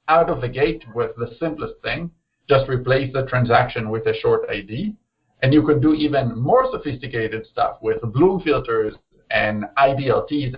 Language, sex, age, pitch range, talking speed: English, male, 50-69, 125-175 Hz, 165 wpm